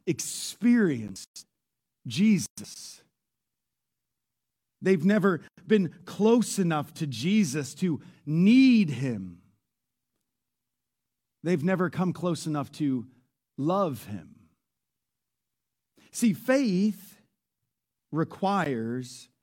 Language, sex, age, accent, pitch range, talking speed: English, male, 40-59, American, 145-220 Hz, 70 wpm